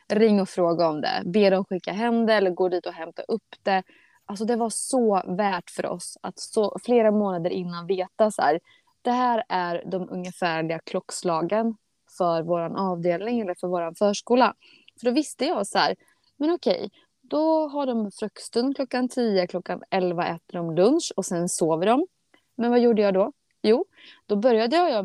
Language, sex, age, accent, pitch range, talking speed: Swedish, female, 20-39, native, 185-250 Hz, 180 wpm